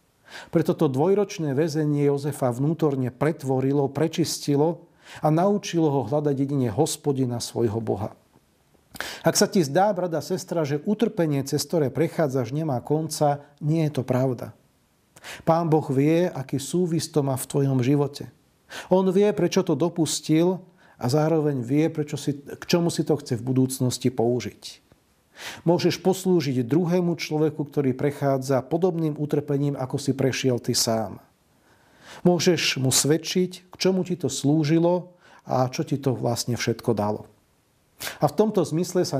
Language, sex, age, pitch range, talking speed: Slovak, male, 40-59, 135-165 Hz, 140 wpm